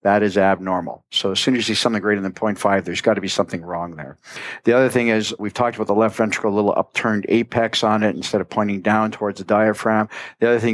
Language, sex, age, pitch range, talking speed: English, male, 50-69, 100-115 Hz, 255 wpm